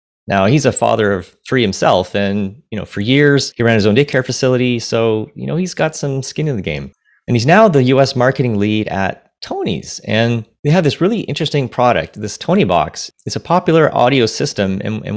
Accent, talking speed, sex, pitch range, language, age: American, 215 wpm, male, 100-135 Hz, English, 30-49